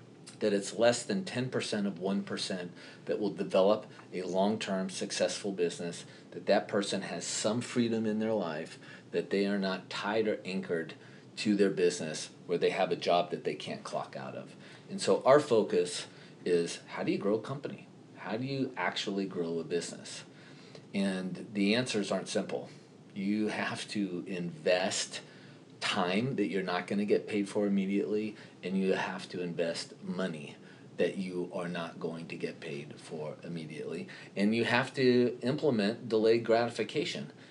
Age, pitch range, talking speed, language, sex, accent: 40-59, 95-110 Hz, 165 wpm, English, male, American